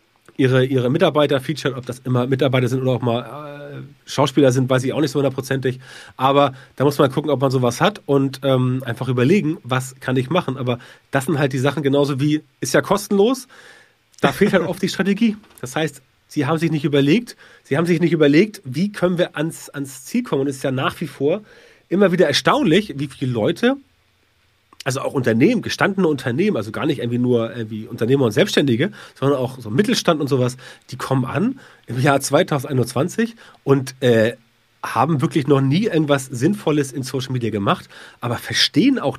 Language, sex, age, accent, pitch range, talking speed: German, male, 40-59, German, 130-160 Hz, 195 wpm